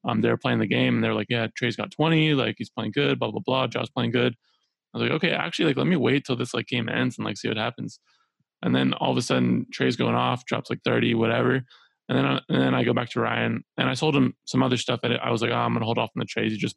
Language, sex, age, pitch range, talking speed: English, male, 20-39, 115-130 Hz, 310 wpm